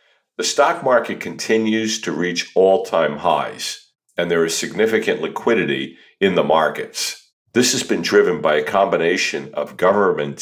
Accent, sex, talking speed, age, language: American, male, 145 wpm, 50-69, English